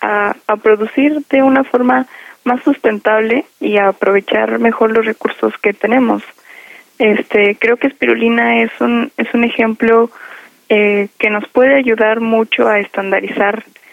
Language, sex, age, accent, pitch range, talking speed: Spanish, female, 20-39, Mexican, 200-245 Hz, 140 wpm